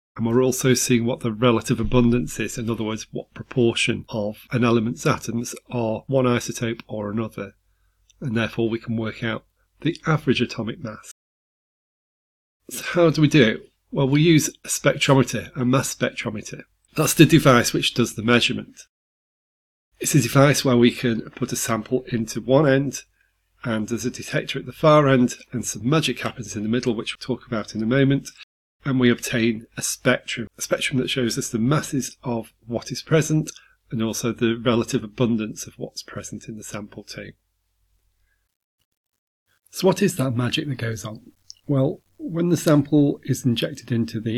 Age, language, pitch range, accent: 30-49, English, 115-135 Hz, British